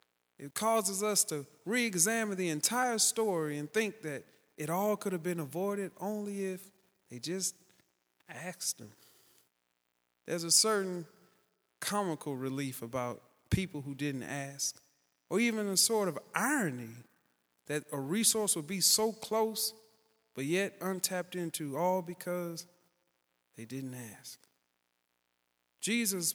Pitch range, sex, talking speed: 135-200 Hz, male, 130 wpm